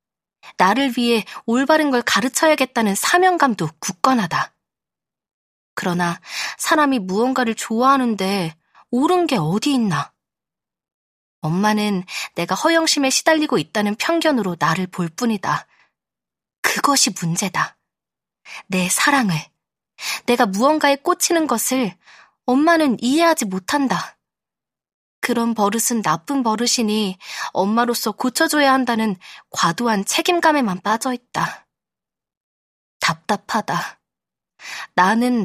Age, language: 20-39, Korean